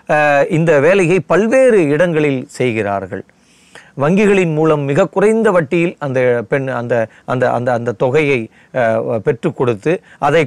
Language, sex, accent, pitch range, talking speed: Tamil, male, native, 135-185 Hz, 115 wpm